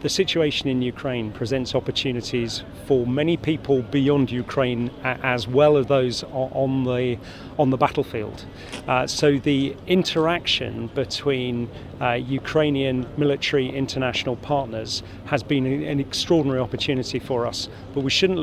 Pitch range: 125-145 Hz